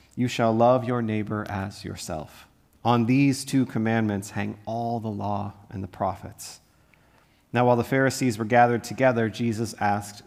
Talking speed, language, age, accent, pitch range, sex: 160 wpm, English, 40-59, American, 105-130 Hz, male